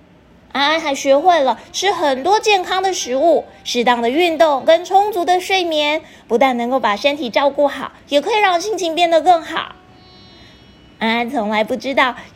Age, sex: 20-39, female